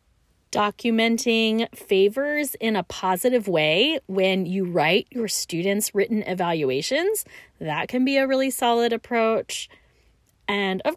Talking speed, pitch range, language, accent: 120 wpm, 185-275 Hz, English, American